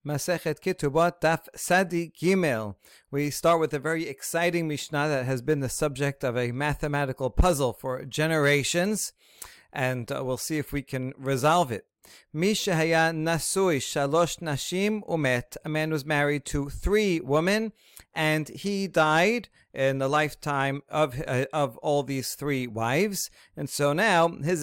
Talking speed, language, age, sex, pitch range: 135 wpm, English, 40-59, male, 135-170 Hz